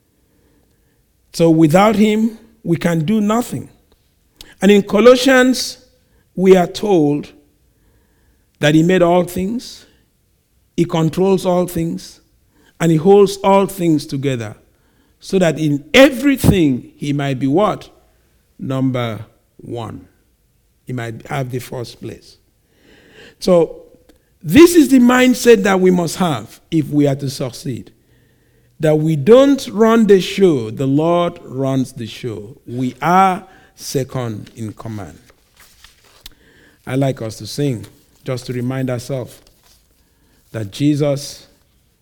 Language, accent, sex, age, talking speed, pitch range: English, Nigerian, male, 50-69, 120 wpm, 115-180 Hz